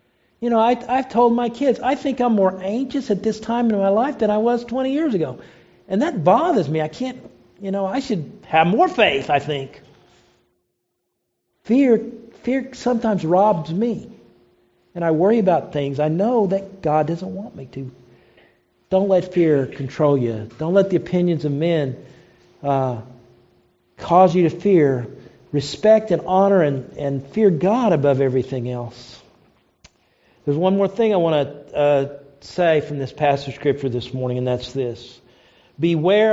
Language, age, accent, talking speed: English, 50-69, American, 170 wpm